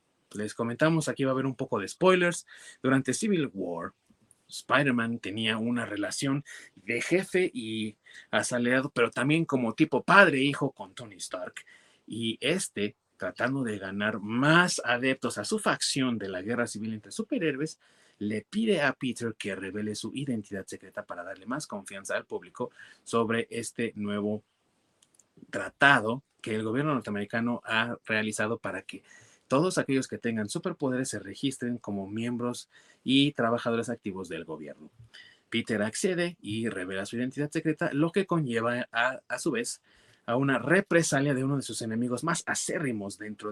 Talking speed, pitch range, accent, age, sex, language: 155 wpm, 110-145 Hz, Mexican, 30-49, male, Spanish